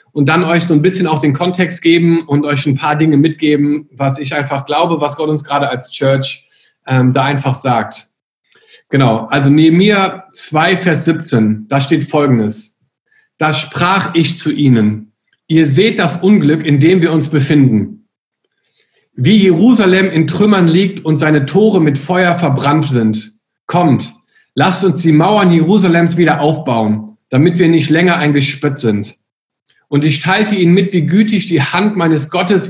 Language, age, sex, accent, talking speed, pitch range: German, 50-69, male, German, 165 wpm, 140-180 Hz